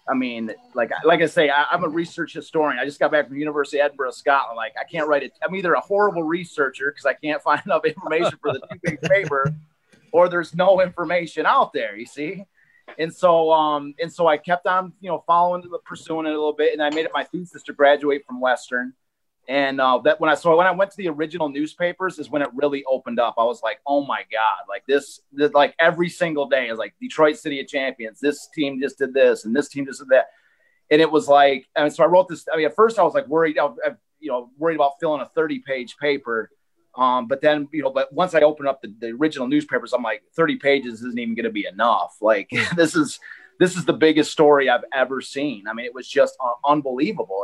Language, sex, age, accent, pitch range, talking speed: English, male, 30-49, American, 140-170 Hz, 245 wpm